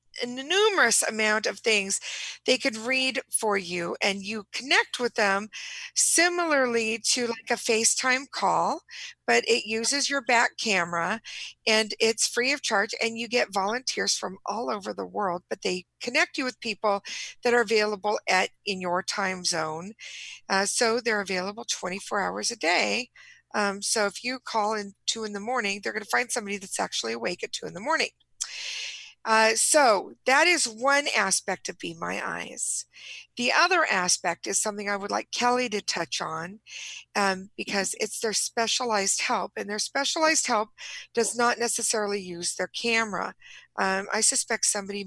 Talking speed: 170 wpm